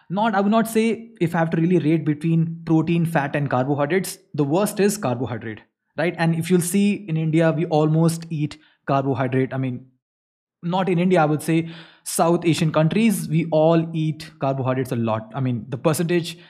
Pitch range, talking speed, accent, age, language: 140-180 Hz, 190 wpm, native, 20-39, Hindi